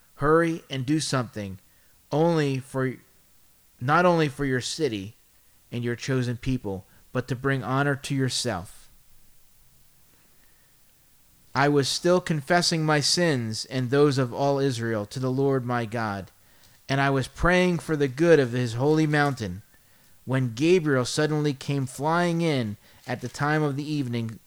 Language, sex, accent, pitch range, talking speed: English, male, American, 120-160 Hz, 145 wpm